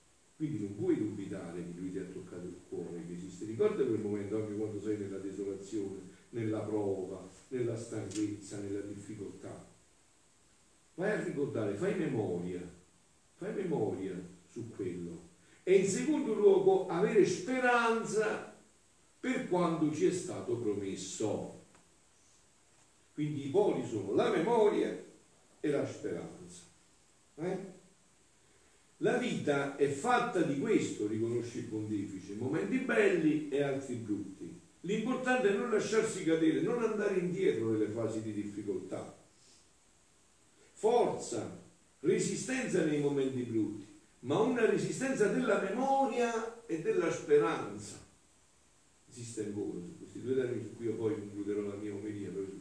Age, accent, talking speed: 50-69, native, 125 wpm